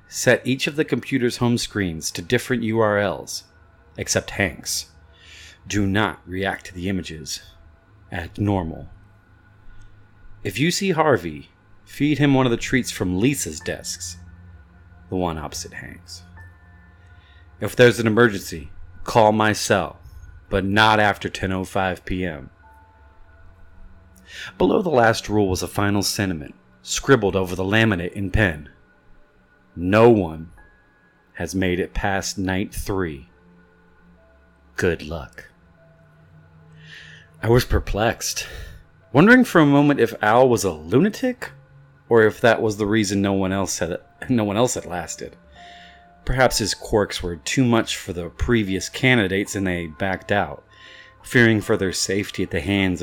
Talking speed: 135 wpm